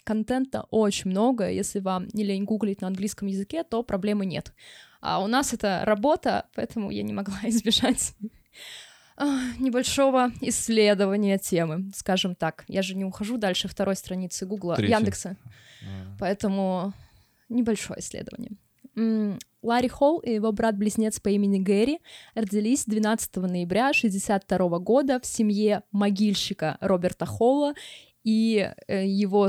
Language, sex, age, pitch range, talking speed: Russian, female, 20-39, 195-230 Hz, 125 wpm